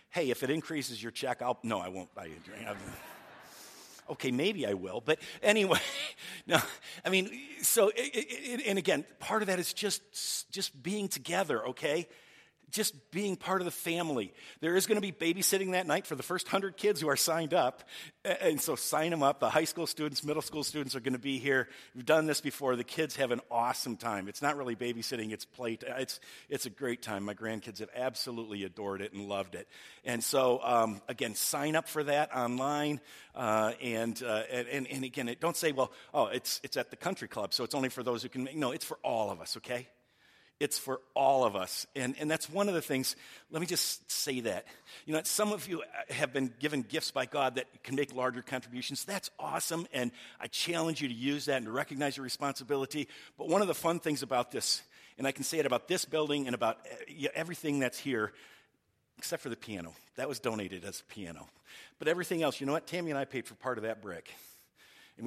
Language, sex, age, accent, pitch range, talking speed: English, male, 50-69, American, 125-165 Hz, 225 wpm